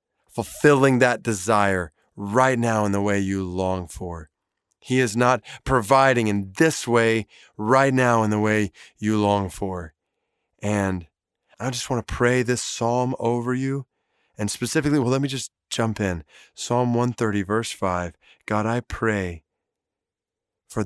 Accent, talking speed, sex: American, 150 wpm, male